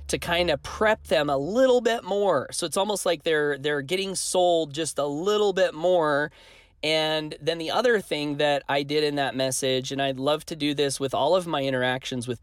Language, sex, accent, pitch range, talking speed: English, male, American, 130-175 Hz, 215 wpm